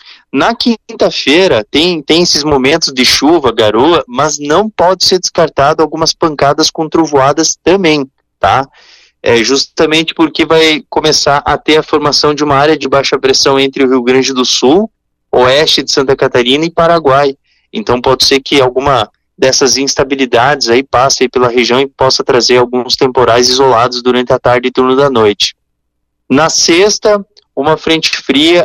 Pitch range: 130-160 Hz